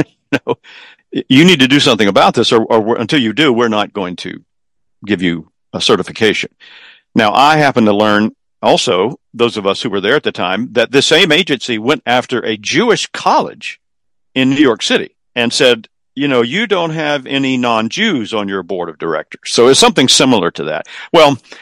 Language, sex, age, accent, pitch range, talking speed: English, male, 50-69, American, 105-125 Hz, 195 wpm